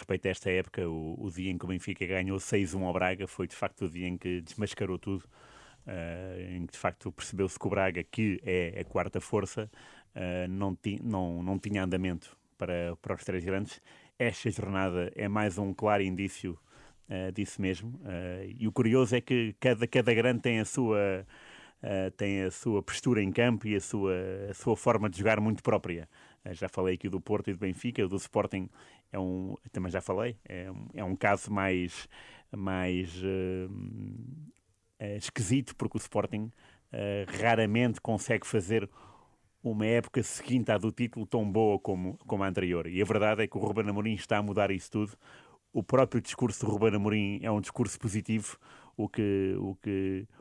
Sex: male